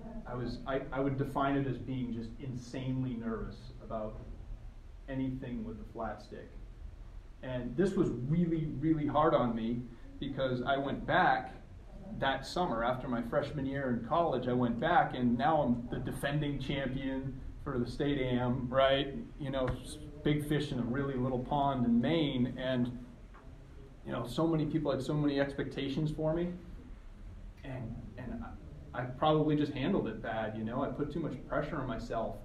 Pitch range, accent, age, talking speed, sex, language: 120-145 Hz, American, 30-49, 170 wpm, male, English